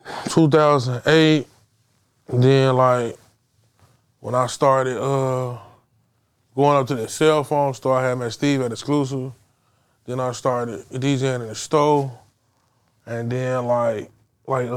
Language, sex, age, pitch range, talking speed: English, male, 20-39, 115-135 Hz, 125 wpm